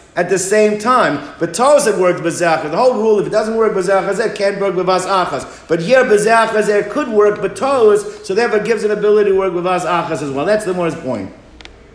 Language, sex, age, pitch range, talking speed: English, male, 50-69, 140-185 Hz, 220 wpm